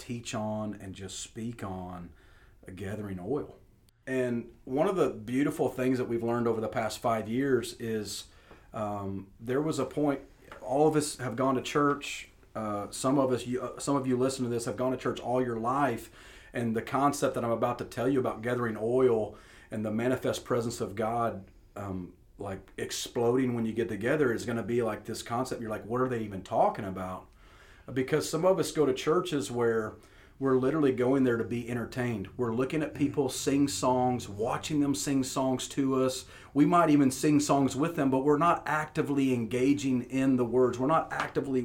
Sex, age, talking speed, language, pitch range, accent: male, 40-59, 200 wpm, English, 115-140 Hz, American